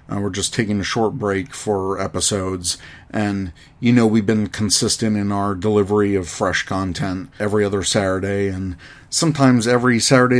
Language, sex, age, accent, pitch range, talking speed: English, male, 40-59, American, 100-115 Hz, 160 wpm